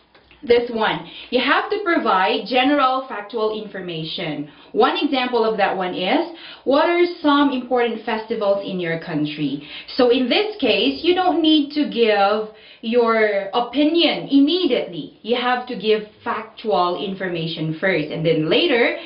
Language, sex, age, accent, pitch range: Korean, female, 20-39, Filipino, 180-275 Hz